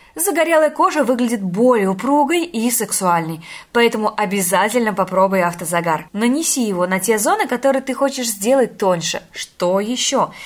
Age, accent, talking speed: 20-39, native, 130 wpm